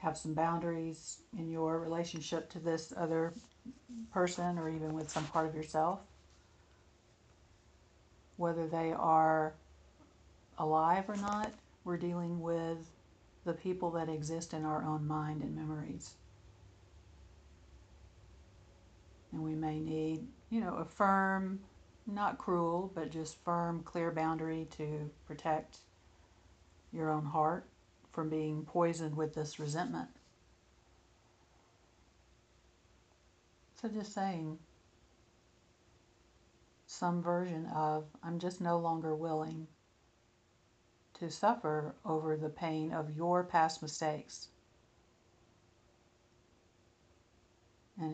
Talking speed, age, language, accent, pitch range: 105 wpm, 50-69, English, American, 140-170 Hz